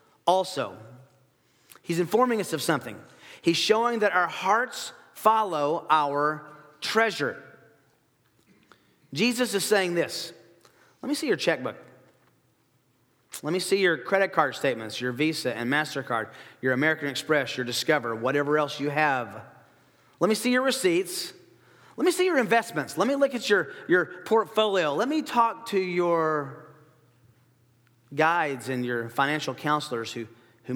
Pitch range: 125-185 Hz